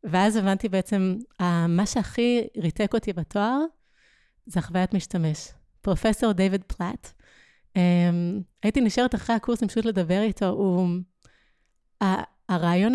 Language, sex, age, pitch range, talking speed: Hebrew, female, 30-49, 180-225 Hz, 110 wpm